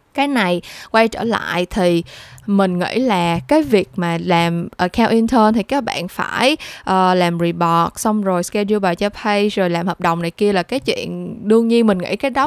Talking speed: 200 wpm